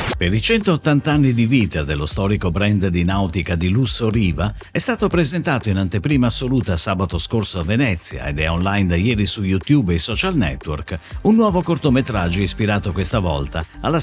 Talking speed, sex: 175 wpm, male